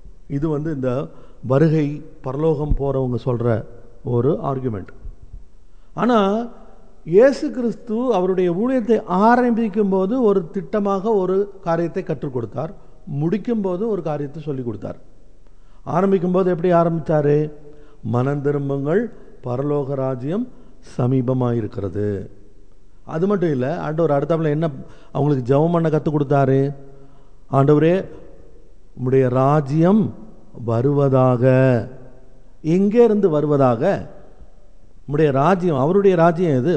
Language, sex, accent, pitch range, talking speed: Tamil, male, native, 125-195 Hz, 95 wpm